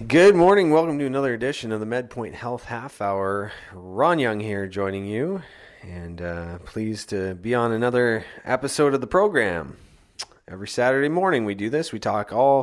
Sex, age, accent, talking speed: male, 30-49, American, 175 wpm